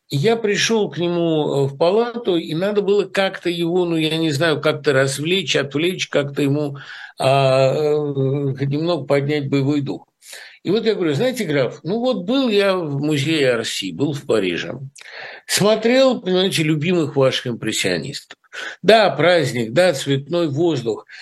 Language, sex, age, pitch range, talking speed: Russian, male, 60-79, 140-200 Hz, 140 wpm